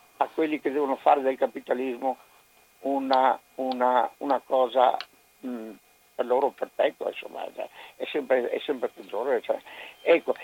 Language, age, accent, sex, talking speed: Italian, 60-79, native, male, 115 wpm